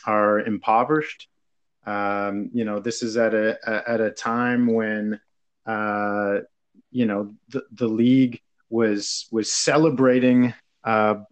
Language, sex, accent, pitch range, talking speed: English, male, American, 110-130 Hz, 125 wpm